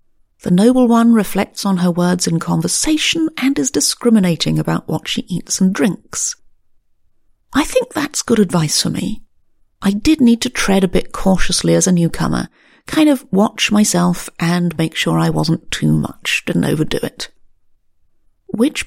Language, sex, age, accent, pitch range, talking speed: English, female, 40-59, British, 170-245 Hz, 160 wpm